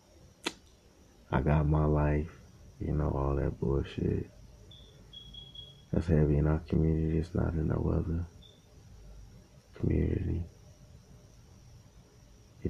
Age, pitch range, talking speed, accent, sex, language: 20-39, 80-105 Hz, 100 wpm, American, male, English